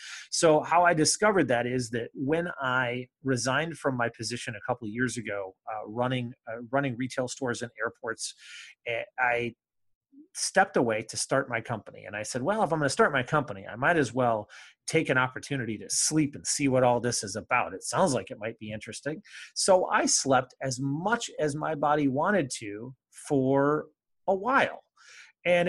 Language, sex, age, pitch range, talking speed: English, male, 30-49, 120-145 Hz, 190 wpm